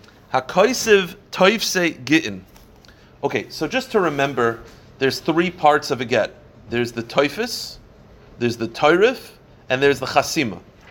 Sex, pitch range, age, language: male, 115-145 Hz, 30-49, English